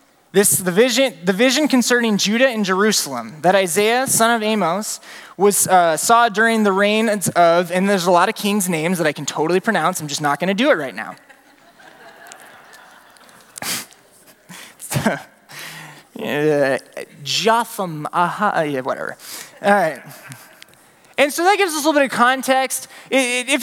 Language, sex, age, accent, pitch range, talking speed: English, male, 20-39, American, 195-245 Hz, 150 wpm